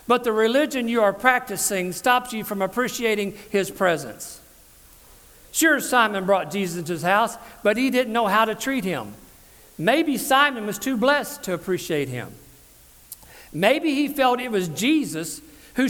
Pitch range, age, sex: 205-265 Hz, 50-69, male